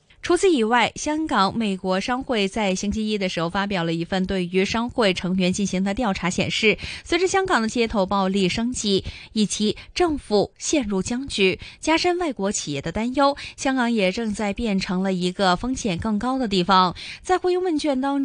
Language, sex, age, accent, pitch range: Chinese, female, 20-39, native, 190-255 Hz